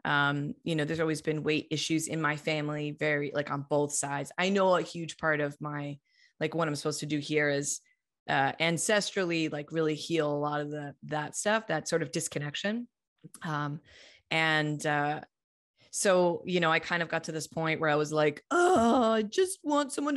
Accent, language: American, English